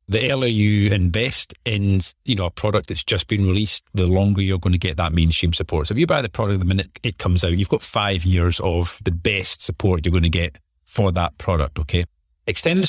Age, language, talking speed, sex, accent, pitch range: 40-59, English, 235 wpm, male, British, 85-105 Hz